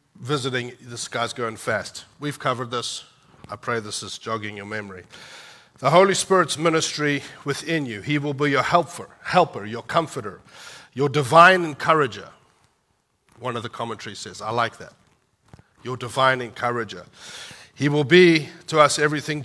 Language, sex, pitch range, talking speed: English, male, 115-145 Hz, 150 wpm